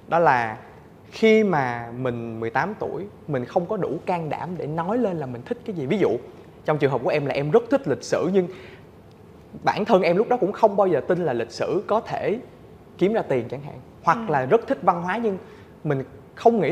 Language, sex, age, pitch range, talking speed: Vietnamese, male, 20-39, 125-210 Hz, 235 wpm